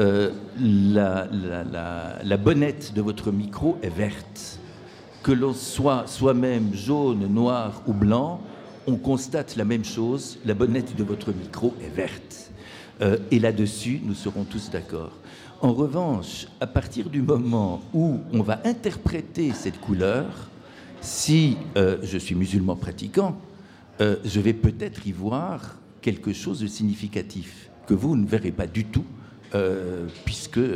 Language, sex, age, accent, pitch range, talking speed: French, male, 60-79, French, 100-135 Hz, 145 wpm